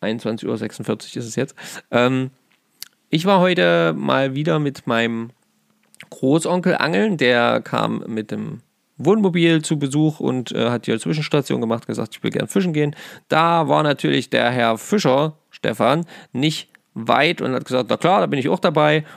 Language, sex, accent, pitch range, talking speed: German, male, German, 120-165 Hz, 170 wpm